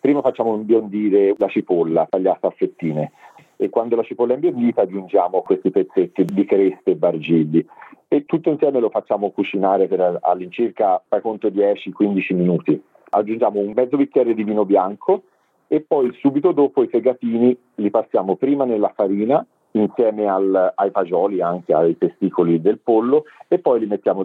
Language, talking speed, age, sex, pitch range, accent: Italian, 160 wpm, 40-59, male, 95-130 Hz, native